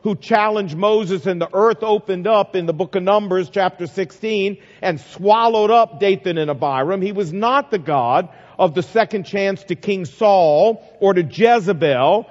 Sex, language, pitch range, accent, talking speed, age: male, English, 175-210 Hz, American, 175 wpm, 50-69